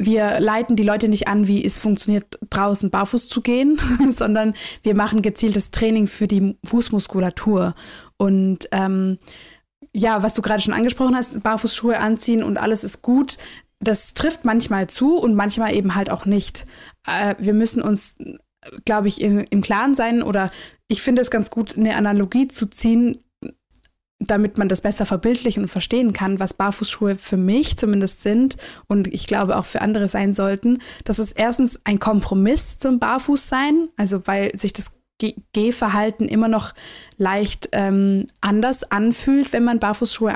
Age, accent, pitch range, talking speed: 20-39, German, 200-235 Hz, 160 wpm